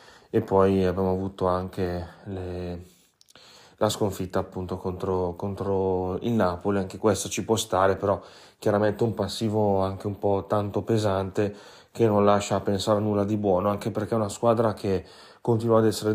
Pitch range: 95-110 Hz